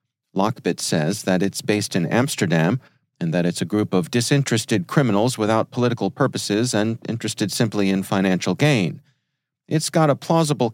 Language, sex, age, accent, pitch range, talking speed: English, male, 40-59, American, 95-130 Hz, 155 wpm